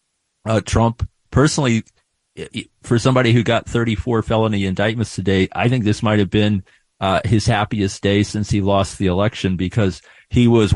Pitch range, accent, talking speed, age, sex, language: 95-110 Hz, American, 160 wpm, 40-59, male, English